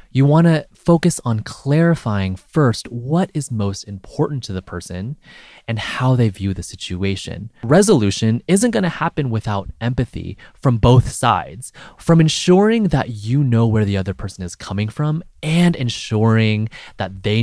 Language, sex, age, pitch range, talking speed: English, male, 20-39, 95-140 Hz, 160 wpm